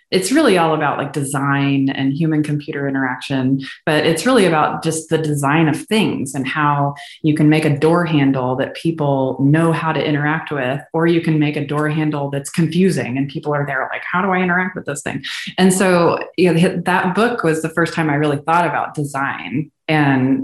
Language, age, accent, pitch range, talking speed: English, 20-39, American, 145-170 Hz, 210 wpm